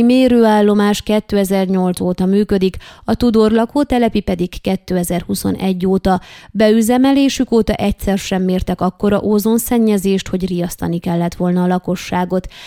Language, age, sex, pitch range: Hungarian, 20-39, female, 190-225 Hz